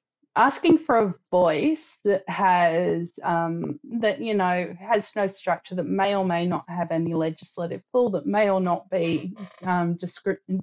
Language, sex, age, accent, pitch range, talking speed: English, female, 30-49, Australian, 170-200 Hz, 165 wpm